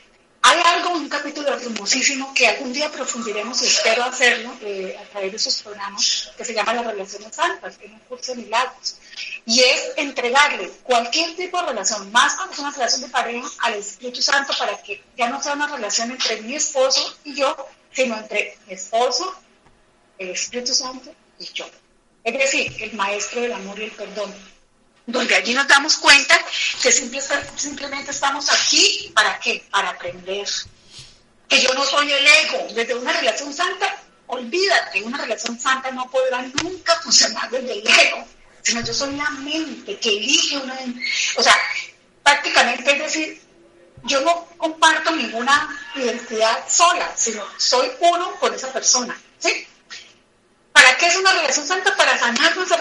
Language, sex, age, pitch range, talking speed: Spanish, female, 30-49, 230-300 Hz, 170 wpm